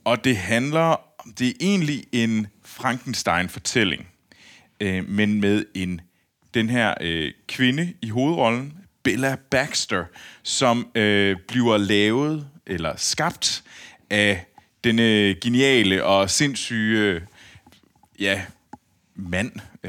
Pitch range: 100-130 Hz